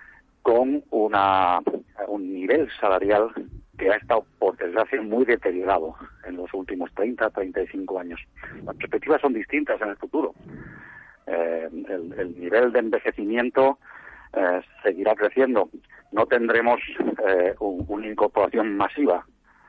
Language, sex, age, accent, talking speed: Spanish, male, 50-69, Spanish, 120 wpm